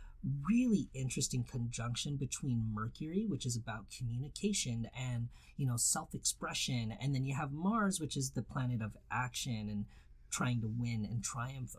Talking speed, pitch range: 160 wpm, 115-145 Hz